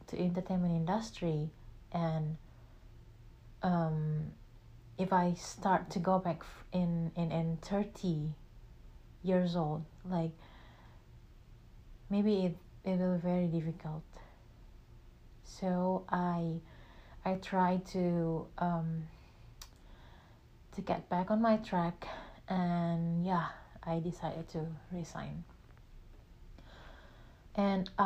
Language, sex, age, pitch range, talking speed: Indonesian, female, 30-49, 160-195 Hz, 95 wpm